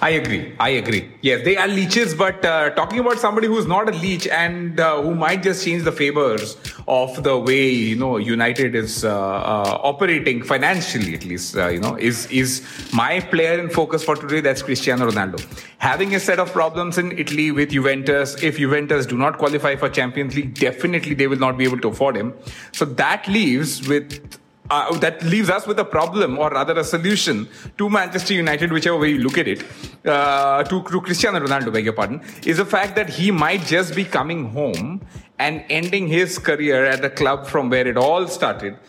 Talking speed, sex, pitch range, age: 205 wpm, male, 130-185 Hz, 30-49